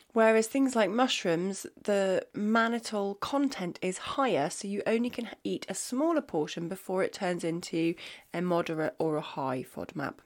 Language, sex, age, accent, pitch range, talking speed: English, female, 30-49, British, 180-235 Hz, 160 wpm